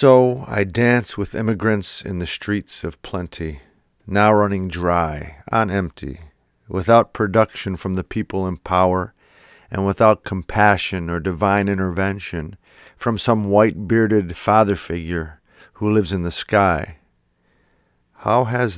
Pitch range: 85-105 Hz